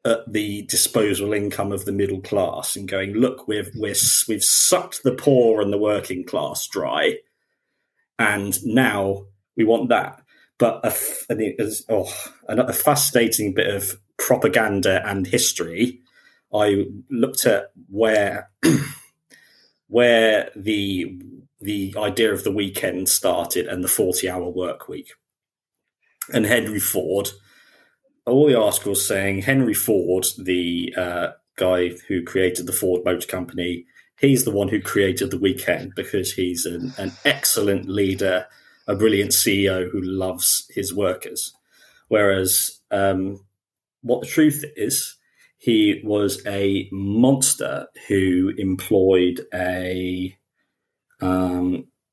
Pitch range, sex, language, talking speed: 95-110 Hz, male, English, 125 wpm